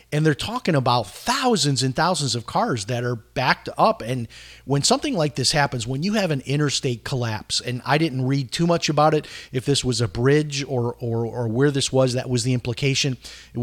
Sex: male